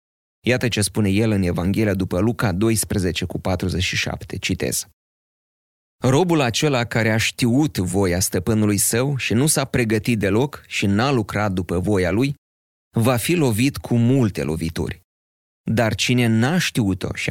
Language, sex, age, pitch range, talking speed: Romanian, male, 30-49, 95-125 Hz, 145 wpm